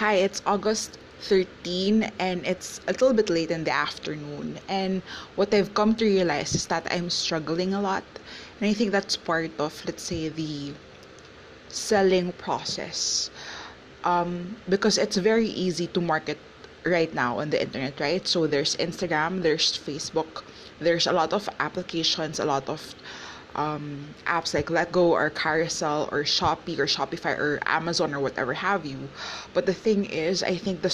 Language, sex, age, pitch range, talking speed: English, female, 20-39, 155-195 Hz, 165 wpm